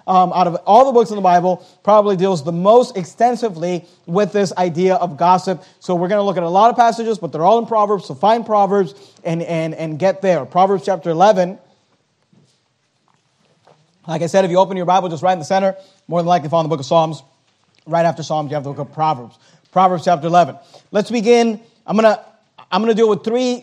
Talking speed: 225 wpm